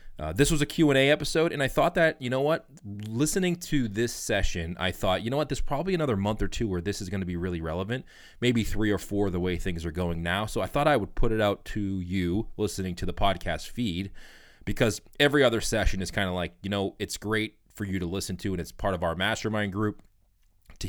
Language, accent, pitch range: English, American, 90-110 Hz